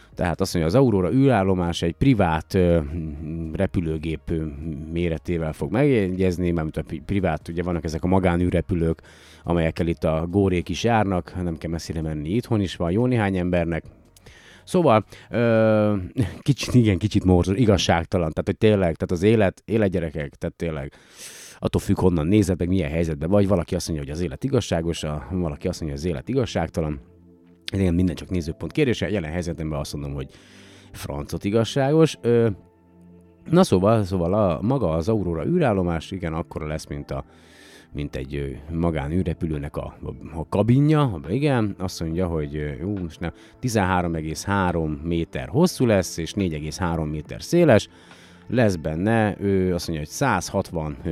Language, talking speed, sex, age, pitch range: Hungarian, 145 wpm, male, 30-49, 80-100 Hz